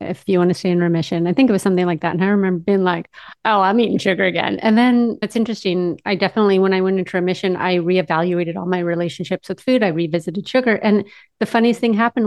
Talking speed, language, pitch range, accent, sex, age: 245 wpm, English, 180-220 Hz, American, female, 30-49